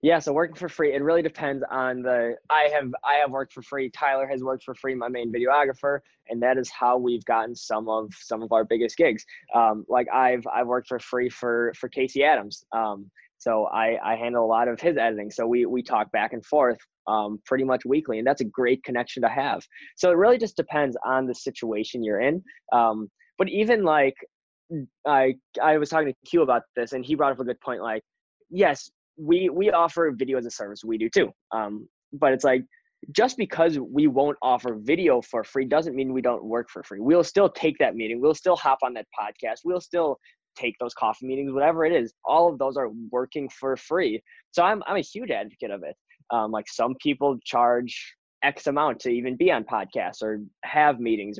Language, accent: English, American